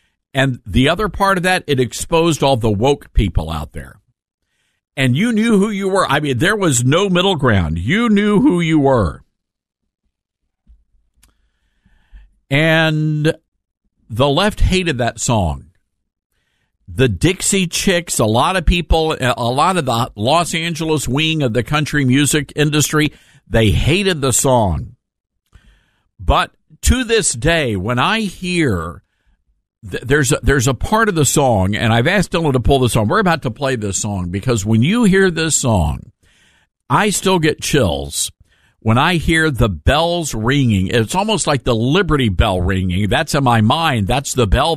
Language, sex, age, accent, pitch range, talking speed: English, male, 50-69, American, 110-165 Hz, 160 wpm